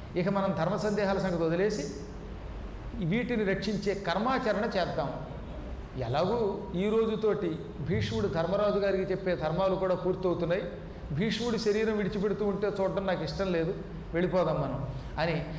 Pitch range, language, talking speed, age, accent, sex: 160-210 Hz, Telugu, 120 wpm, 40-59, native, male